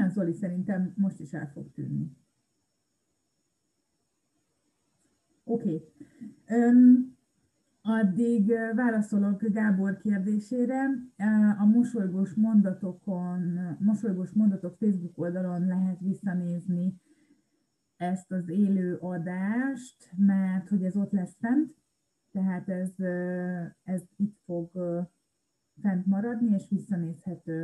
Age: 30-49